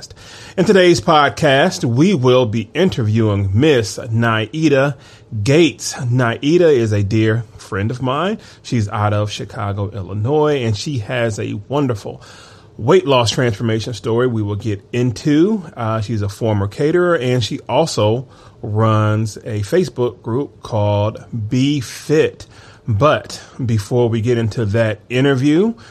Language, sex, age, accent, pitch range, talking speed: English, male, 30-49, American, 105-130 Hz, 130 wpm